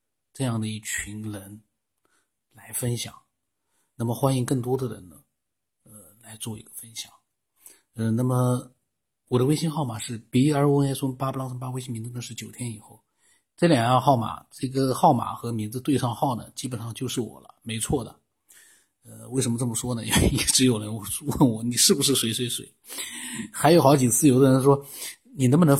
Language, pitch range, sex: Chinese, 115-140 Hz, male